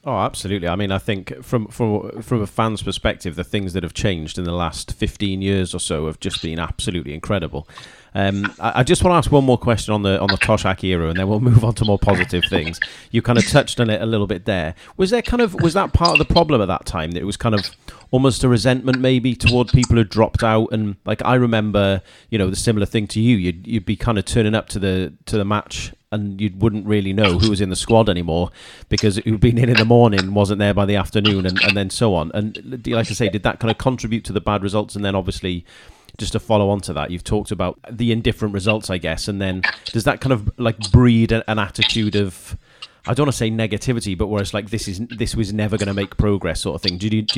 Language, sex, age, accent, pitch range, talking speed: English, male, 30-49, British, 95-115 Hz, 265 wpm